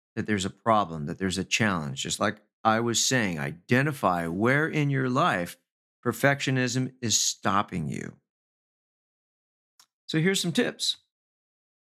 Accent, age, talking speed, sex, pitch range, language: American, 50-69, 130 wpm, male, 105-130 Hz, English